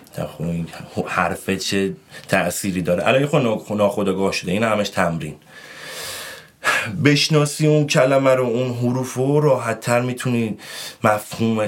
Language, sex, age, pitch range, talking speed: Persian, male, 30-49, 85-110 Hz, 115 wpm